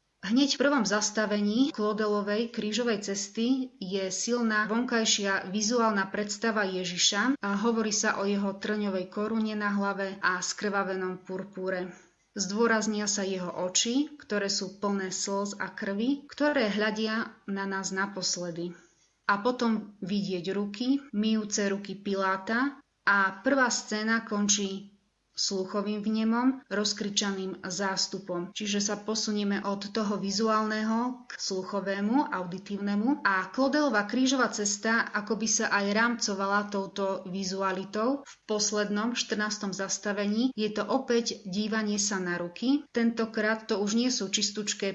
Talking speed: 125 wpm